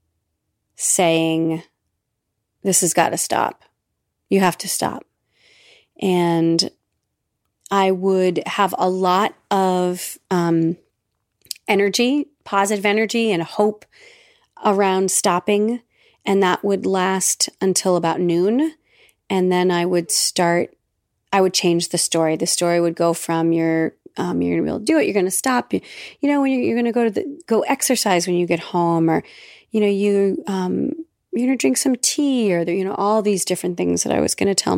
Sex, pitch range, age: female, 165-205 Hz, 30-49